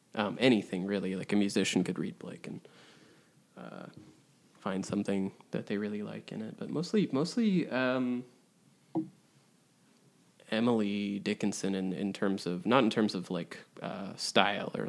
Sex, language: male, English